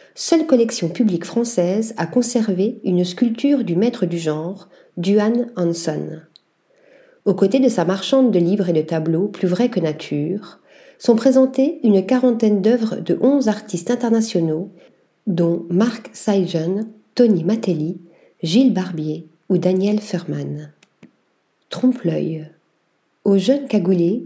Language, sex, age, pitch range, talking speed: French, female, 40-59, 175-235 Hz, 125 wpm